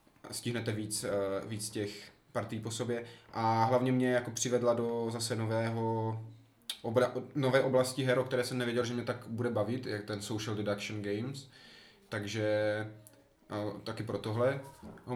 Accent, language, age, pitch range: native, Czech, 20-39, 105-125 Hz